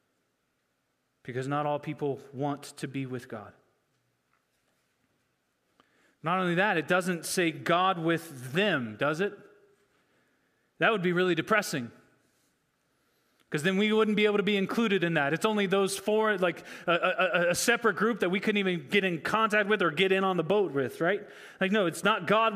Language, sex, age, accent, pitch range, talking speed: English, male, 30-49, American, 145-210 Hz, 180 wpm